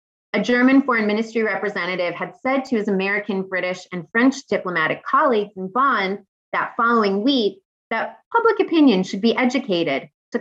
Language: English